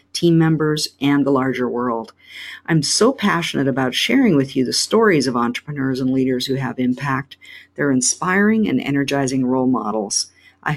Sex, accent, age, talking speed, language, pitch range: female, American, 50-69, 160 wpm, English, 130-160 Hz